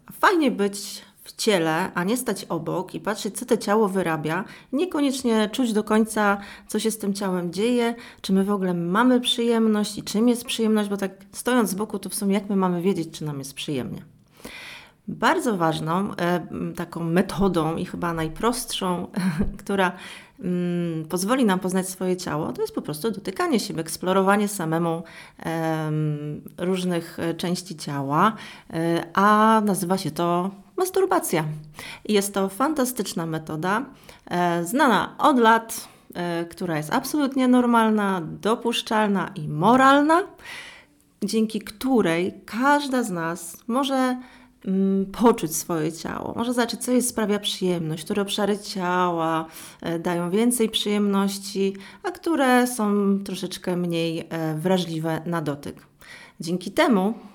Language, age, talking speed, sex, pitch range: English, 30-49, 130 wpm, female, 175-230 Hz